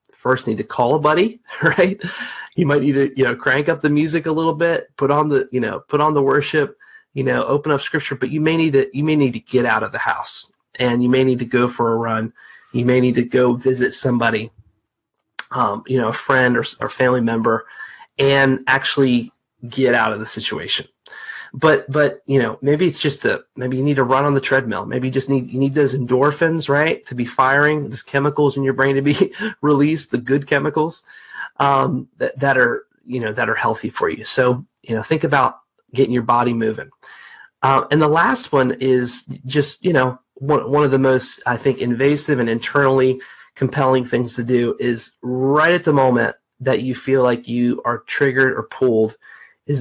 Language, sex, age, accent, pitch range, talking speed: English, male, 30-49, American, 125-150 Hz, 215 wpm